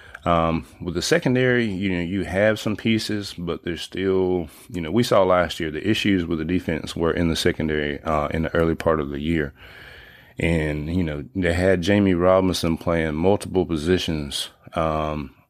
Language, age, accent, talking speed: English, 30-49, American, 180 wpm